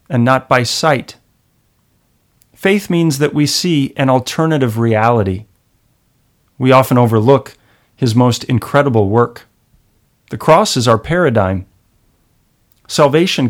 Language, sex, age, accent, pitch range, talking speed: English, male, 30-49, American, 110-135 Hz, 110 wpm